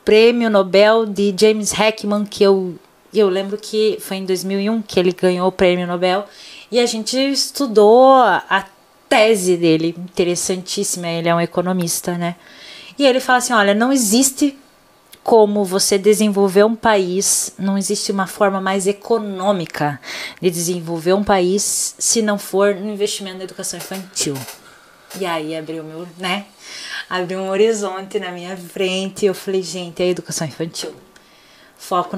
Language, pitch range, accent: Portuguese, 185-230 Hz, Brazilian